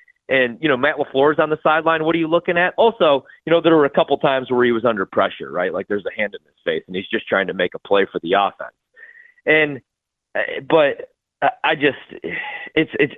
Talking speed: 230 wpm